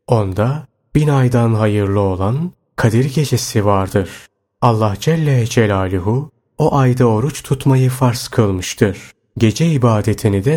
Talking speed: 115 wpm